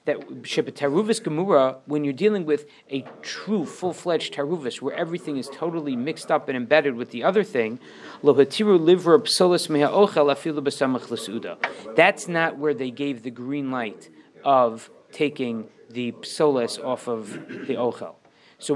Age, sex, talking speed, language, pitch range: 40-59, male, 120 wpm, English, 145-210 Hz